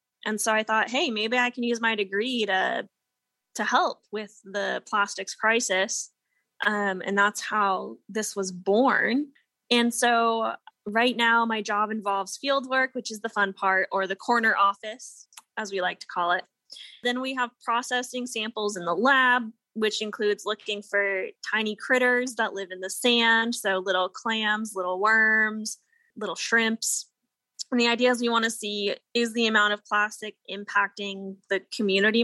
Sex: female